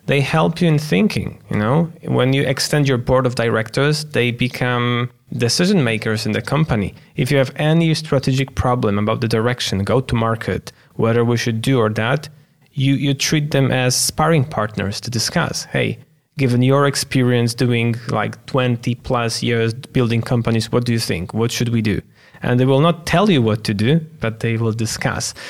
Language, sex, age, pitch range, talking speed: English, male, 20-39, 110-135 Hz, 190 wpm